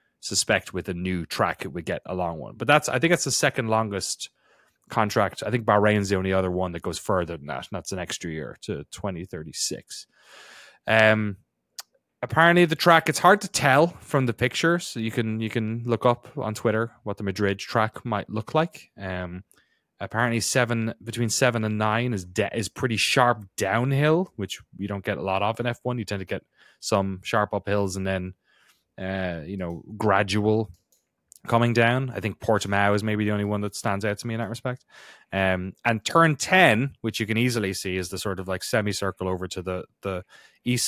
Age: 20-39